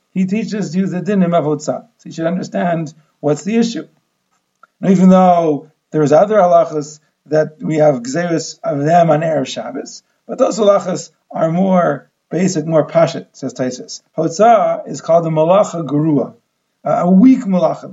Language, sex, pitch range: English, male, 165-215 Hz